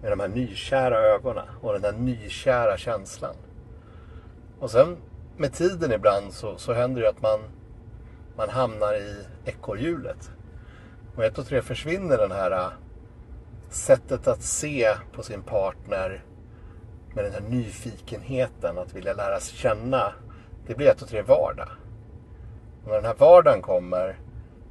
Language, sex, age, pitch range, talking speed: Swedish, male, 60-79, 95-115 Hz, 145 wpm